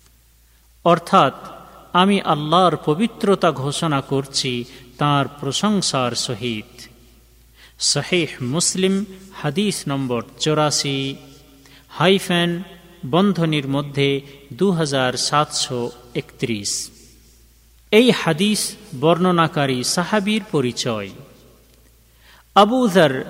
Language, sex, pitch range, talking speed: Bengali, male, 130-180 Hz, 60 wpm